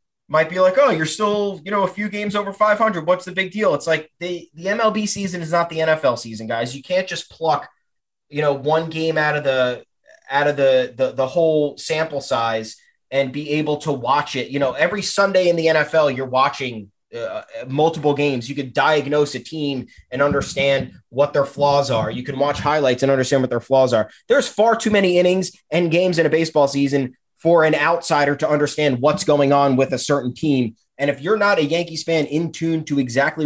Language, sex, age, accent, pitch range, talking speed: English, male, 20-39, American, 140-185 Hz, 215 wpm